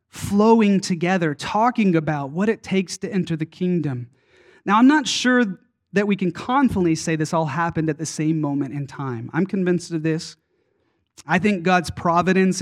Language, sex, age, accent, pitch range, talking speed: English, male, 30-49, American, 155-200 Hz, 175 wpm